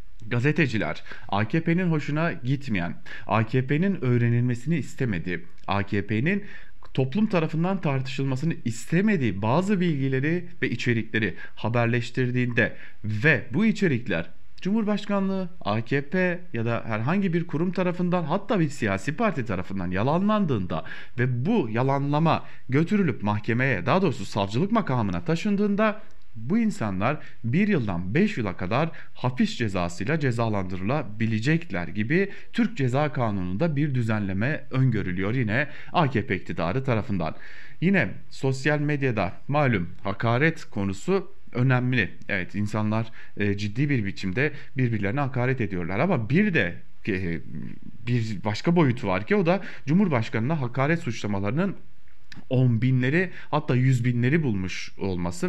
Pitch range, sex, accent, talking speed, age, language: 105-165 Hz, male, Turkish, 110 wpm, 40-59, German